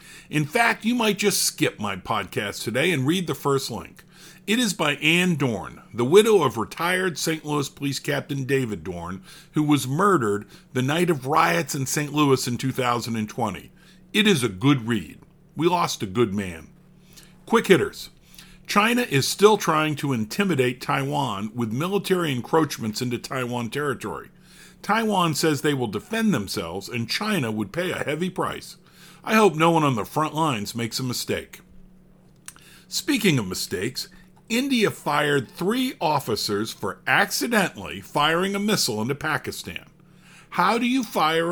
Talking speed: 155 wpm